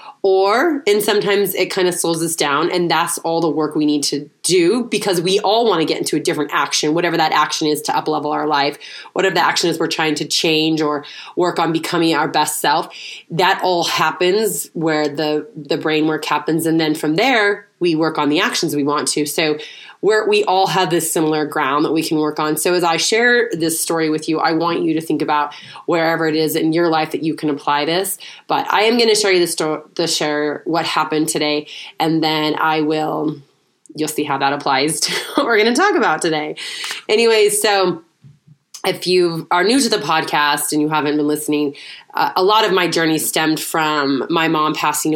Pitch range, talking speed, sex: 150-185 Hz, 220 wpm, female